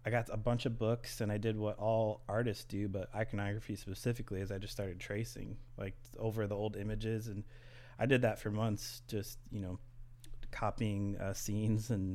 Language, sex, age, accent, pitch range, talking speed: English, male, 30-49, American, 105-120 Hz, 195 wpm